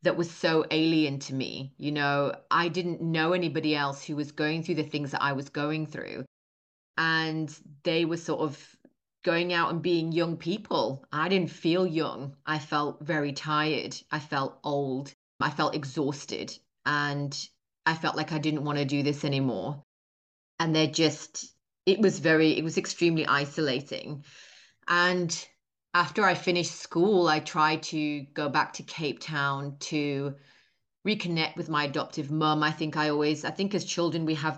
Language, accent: English, British